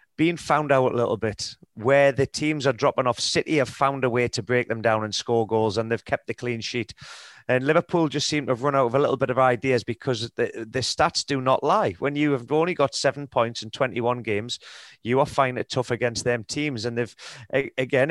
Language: English